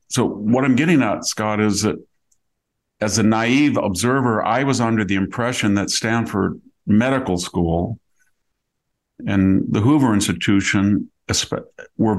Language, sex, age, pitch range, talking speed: English, male, 50-69, 100-115 Hz, 130 wpm